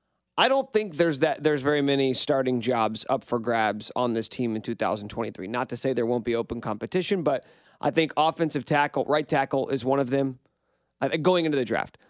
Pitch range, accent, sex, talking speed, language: 125-165 Hz, American, male, 205 wpm, English